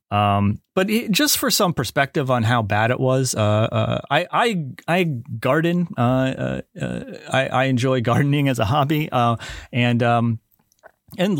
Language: English